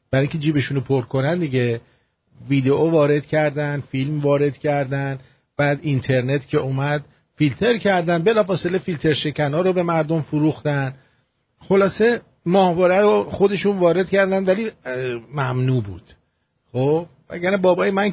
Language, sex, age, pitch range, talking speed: English, male, 50-69, 125-165 Hz, 130 wpm